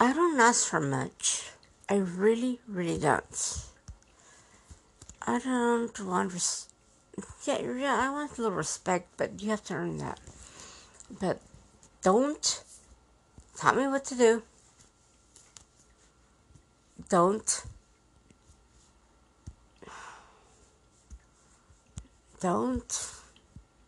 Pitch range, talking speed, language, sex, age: 185-240 Hz, 90 wpm, English, female, 60-79